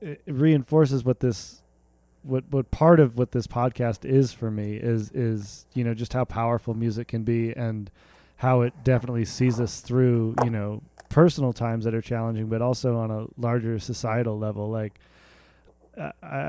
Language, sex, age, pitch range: English, male, 20-39, 115-125 Hz